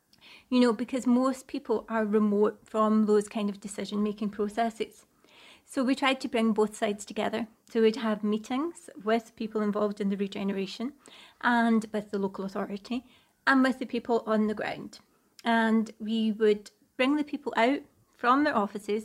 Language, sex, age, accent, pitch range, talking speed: English, female, 30-49, British, 215-245 Hz, 170 wpm